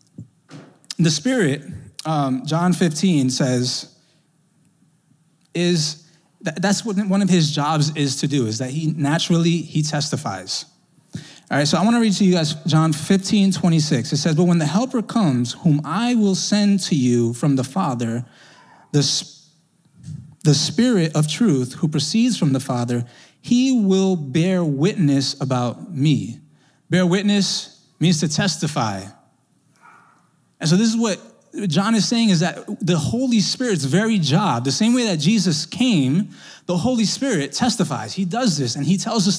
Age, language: 20-39, English